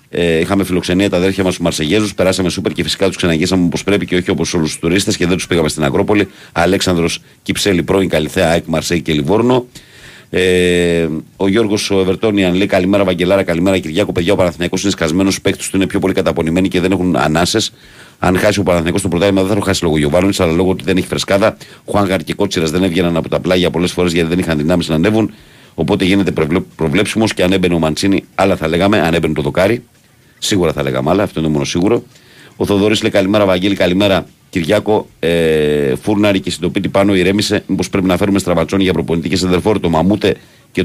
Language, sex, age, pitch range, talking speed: Greek, male, 50-69, 85-100 Hz, 155 wpm